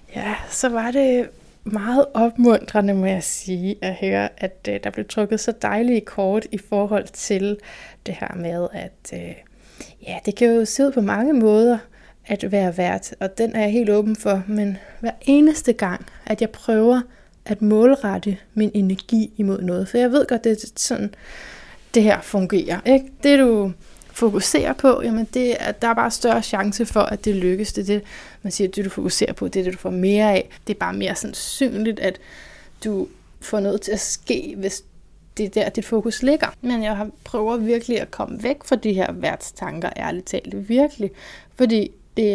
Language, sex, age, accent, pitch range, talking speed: Danish, female, 20-39, native, 195-230 Hz, 185 wpm